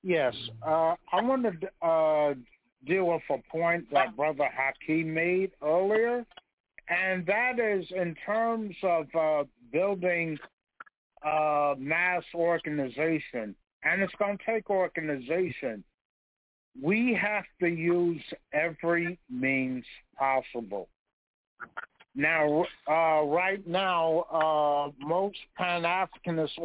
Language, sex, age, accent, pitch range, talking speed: English, male, 60-79, American, 150-185 Hz, 105 wpm